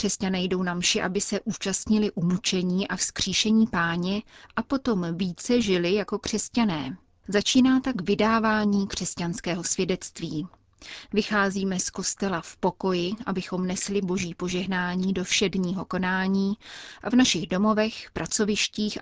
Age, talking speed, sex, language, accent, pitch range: 30-49, 125 wpm, female, Czech, native, 180-215 Hz